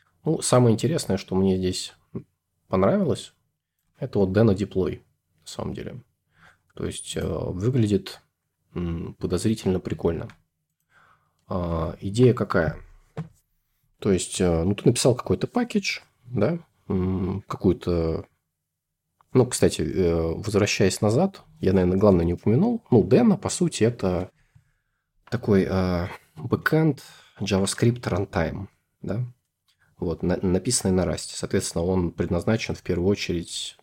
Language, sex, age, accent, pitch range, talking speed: Russian, male, 20-39, native, 85-115 Hz, 105 wpm